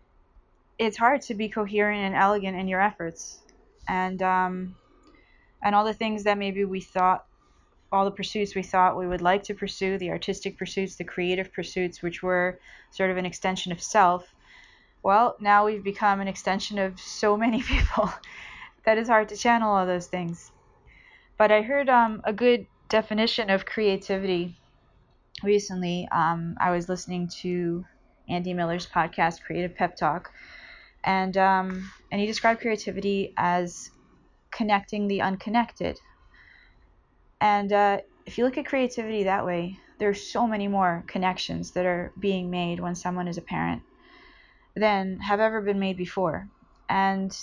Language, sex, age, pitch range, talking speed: English, female, 20-39, 180-210 Hz, 155 wpm